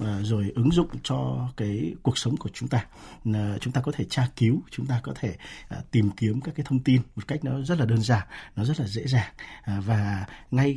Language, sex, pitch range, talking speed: Vietnamese, male, 110-145 Hz, 225 wpm